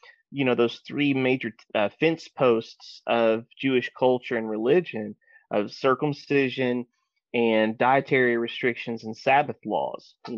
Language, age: English, 30-49